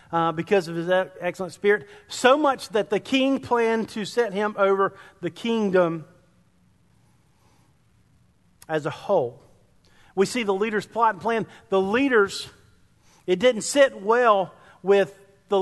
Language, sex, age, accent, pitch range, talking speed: English, male, 40-59, American, 155-195 Hz, 140 wpm